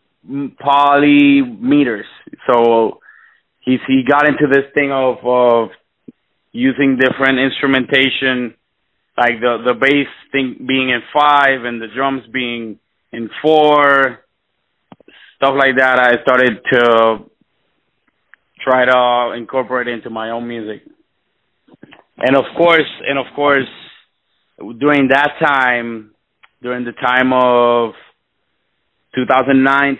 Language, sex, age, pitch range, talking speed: English, male, 30-49, 120-135 Hz, 110 wpm